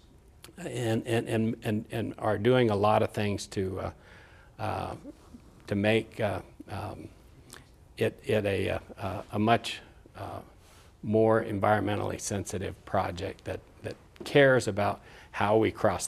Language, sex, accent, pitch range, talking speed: English, male, American, 100-110 Hz, 130 wpm